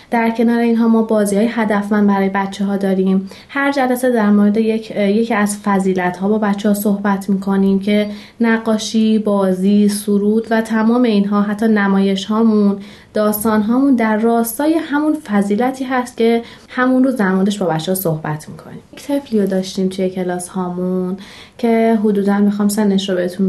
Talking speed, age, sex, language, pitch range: 170 wpm, 30-49, female, Persian, 195-225 Hz